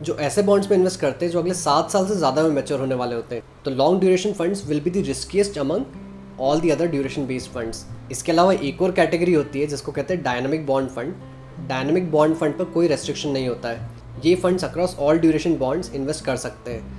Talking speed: 235 wpm